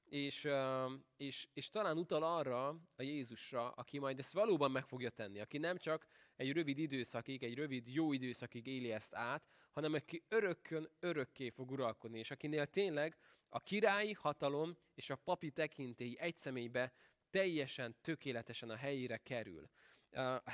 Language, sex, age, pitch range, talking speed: Hungarian, male, 20-39, 120-150 Hz, 145 wpm